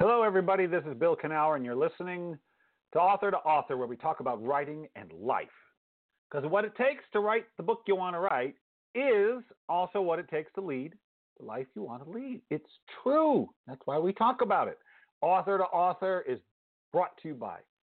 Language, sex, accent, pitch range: English, male, American, 150-215 Hz